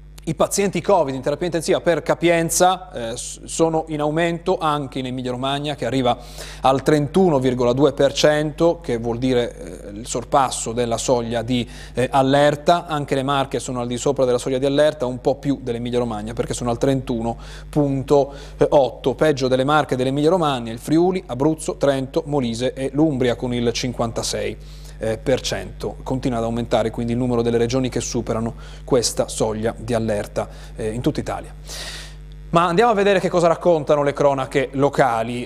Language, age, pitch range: Italian, 30-49, 130-165 Hz